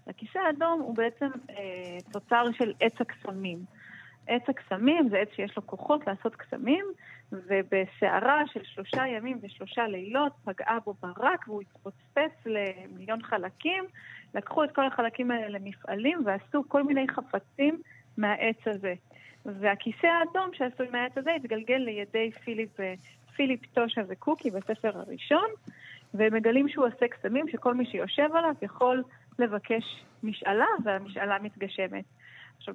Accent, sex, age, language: native, female, 30-49, Hebrew